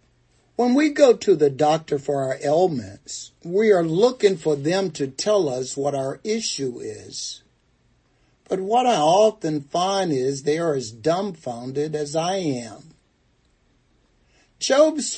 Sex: male